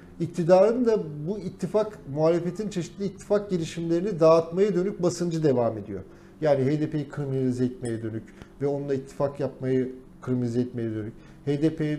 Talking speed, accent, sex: 130 wpm, native, male